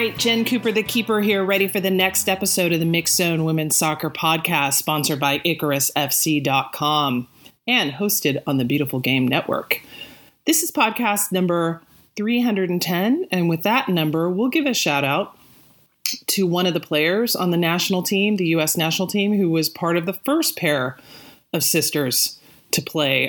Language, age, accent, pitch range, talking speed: English, 30-49, American, 145-195 Hz, 170 wpm